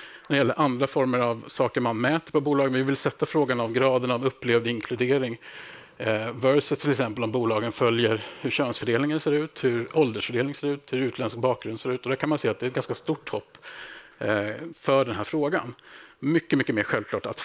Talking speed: 200 wpm